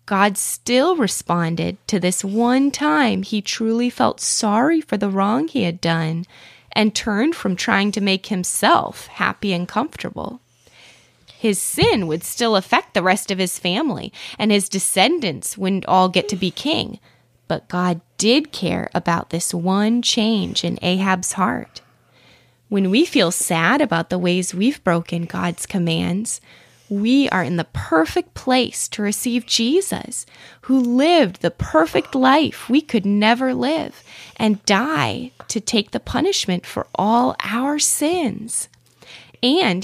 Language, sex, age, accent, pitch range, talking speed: English, female, 20-39, American, 185-290 Hz, 145 wpm